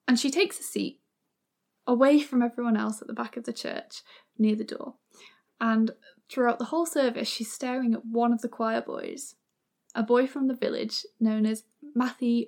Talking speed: 190 wpm